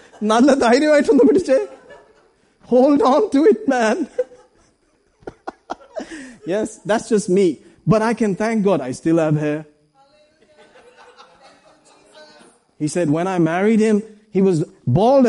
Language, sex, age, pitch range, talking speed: English, male, 30-49, 190-280 Hz, 105 wpm